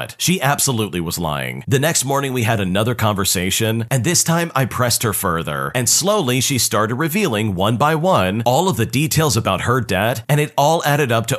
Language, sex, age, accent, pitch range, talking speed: English, male, 40-59, American, 105-150 Hz, 205 wpm